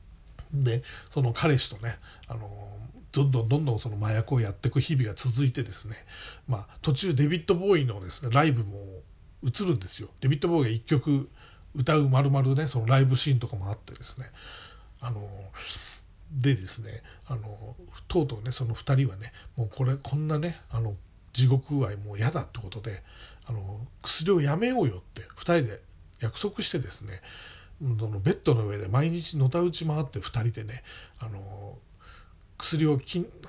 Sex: male